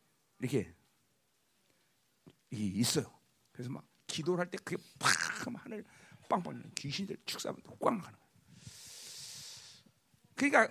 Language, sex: Korean, male